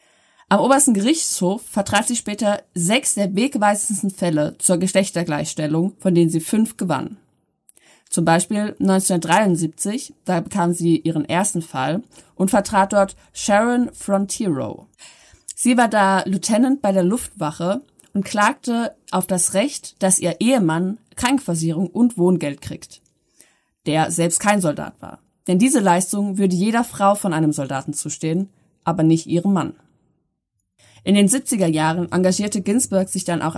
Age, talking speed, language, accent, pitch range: 20-39, 140 wpm, German, German, 170-215 Hz